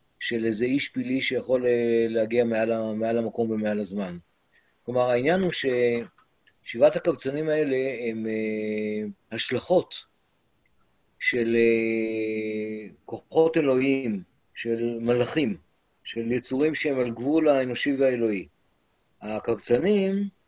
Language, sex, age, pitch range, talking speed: Hebrew, male, 50-69, 115-150 Hz, 100 wpm